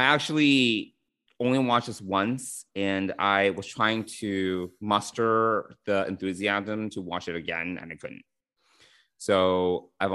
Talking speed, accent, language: 135 wpm, American, English